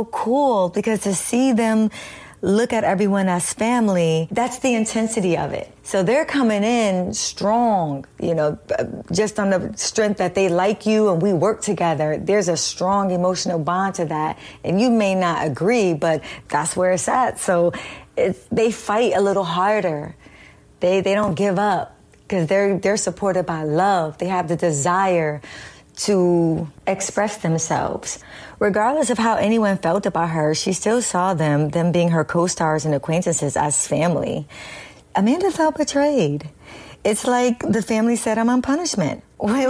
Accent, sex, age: American, female, 30-49